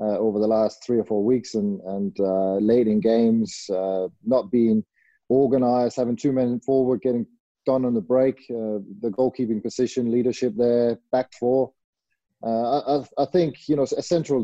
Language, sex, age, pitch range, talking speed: English, male, 20-39, 105-130 Hz, 180 wpm